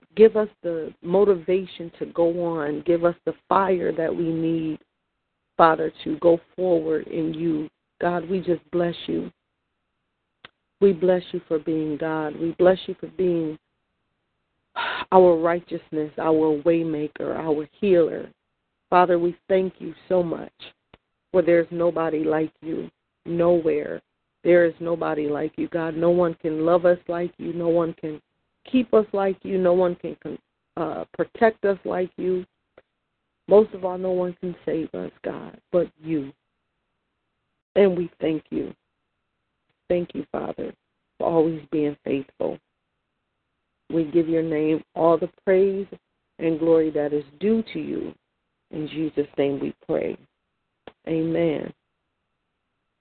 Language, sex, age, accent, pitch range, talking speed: English, female, 40-59, American, 160-180 Hz, 145 wpm